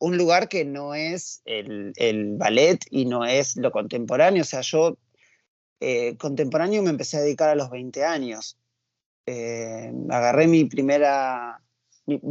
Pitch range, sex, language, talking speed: 120-170 Hz, male, Spanish, 150 wpm